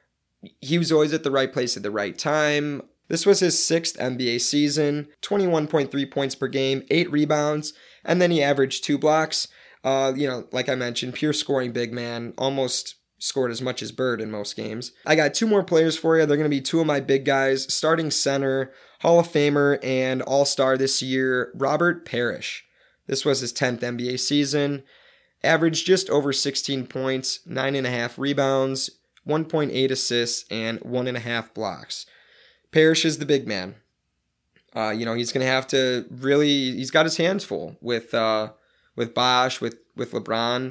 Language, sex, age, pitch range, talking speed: English, male, 20-39, 120-150 Hz, 185 wpm